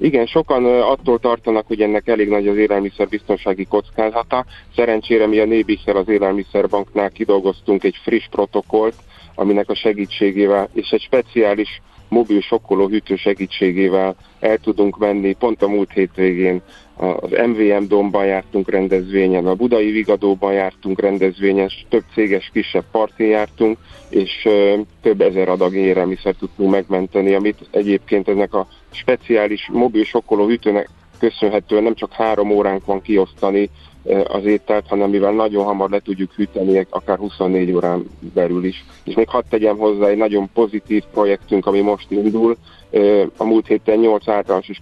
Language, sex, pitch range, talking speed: Hungarian, male, 95-105 Hz, 145 wpm